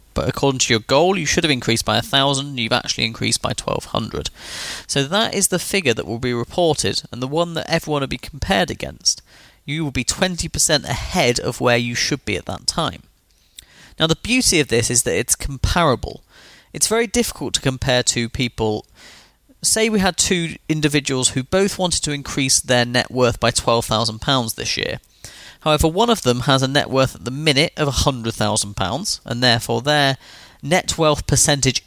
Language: English